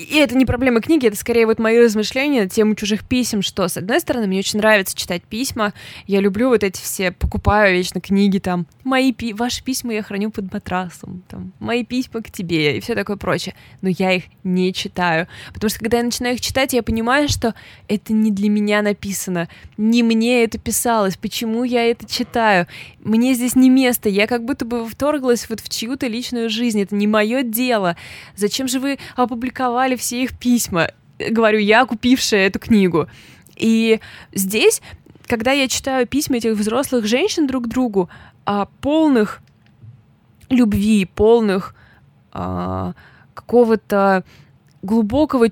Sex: female